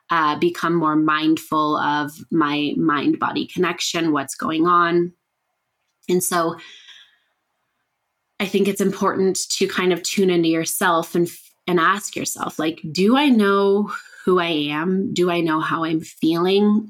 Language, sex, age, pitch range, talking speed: English, female, 20-39, 165-200 Hz, 145 wpm